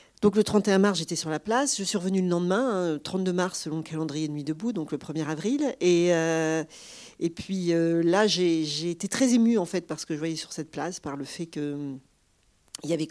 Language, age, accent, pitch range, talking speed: French, 40-59, French, 155-195 Hz, 245 wpm